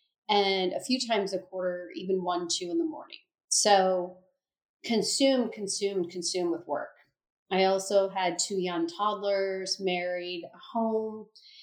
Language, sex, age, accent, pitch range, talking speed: English, female, 30-49, American, 185-245 Hz, 135 wpm